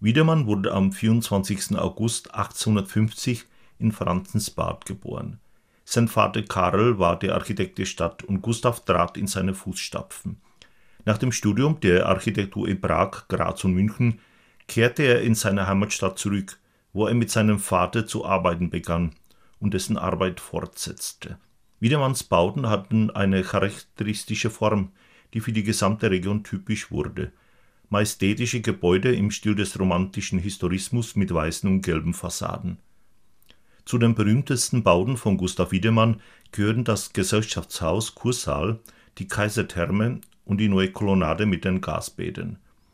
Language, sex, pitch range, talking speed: Czech, male, 95-115 Hz, 135 wpm